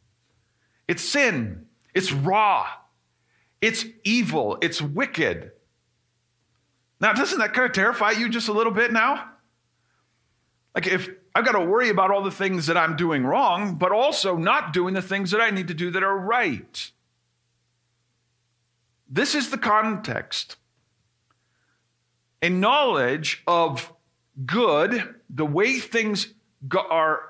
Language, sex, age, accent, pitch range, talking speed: English, male, 50-69, American, 120-190 Hz, 130 wpm